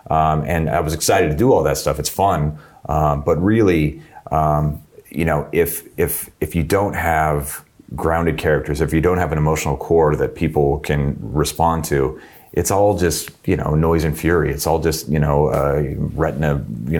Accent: American